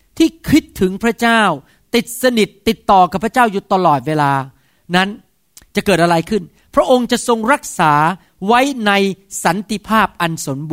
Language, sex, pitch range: Thai, male, 160-220 Hz